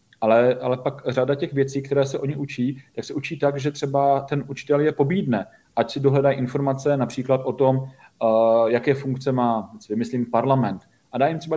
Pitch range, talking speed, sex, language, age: 120-140 Hz, 190 wpm, male, Slovak, 40-59